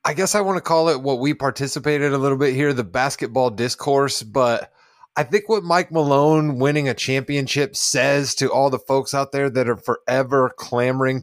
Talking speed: 200 wpm